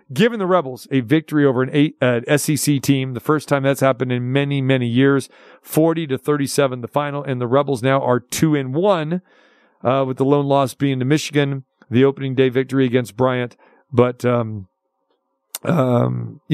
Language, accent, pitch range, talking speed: English, American, 130-155 Hz, 180 wpm